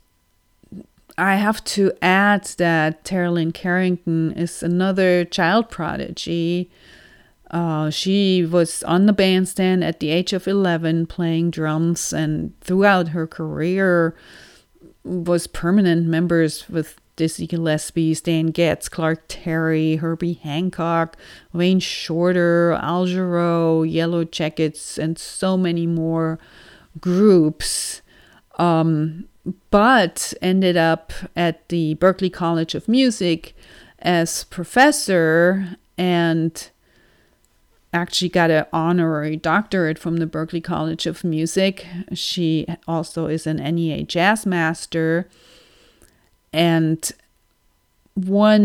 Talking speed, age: 100 wpm, 40-59